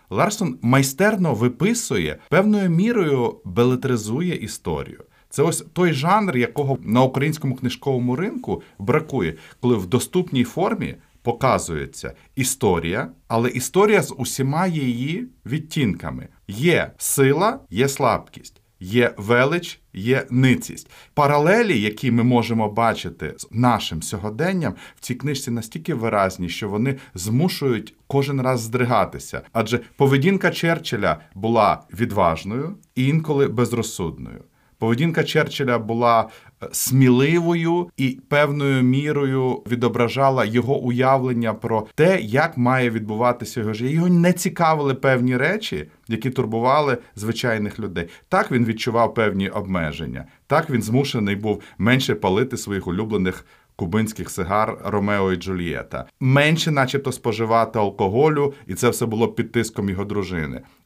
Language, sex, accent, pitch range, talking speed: Ukrainian, male, native, 110-140 Hz, 120 wpm